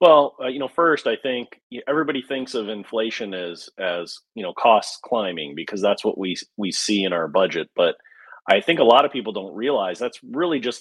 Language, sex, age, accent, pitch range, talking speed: English, male, 30-49, American, 105-130 Hz, 210 wpm